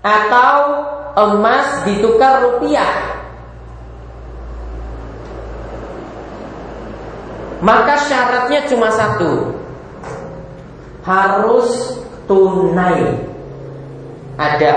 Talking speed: 45 wpm